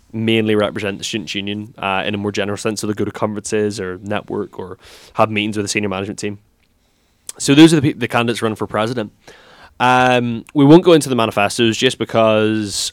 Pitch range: 100-120 Hz